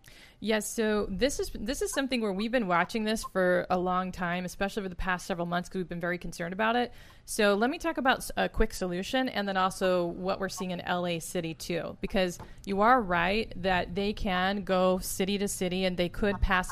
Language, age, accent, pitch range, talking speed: English, 30-49, American, 180-220 Hz, 220 wpm